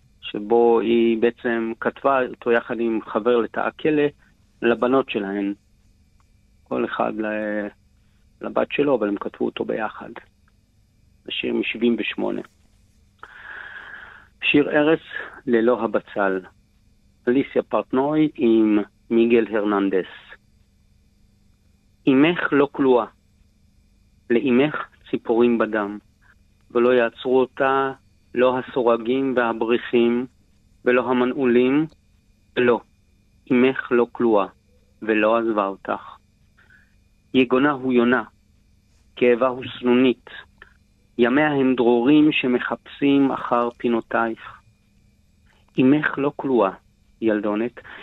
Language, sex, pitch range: Hebrew, male, 105-125 Hz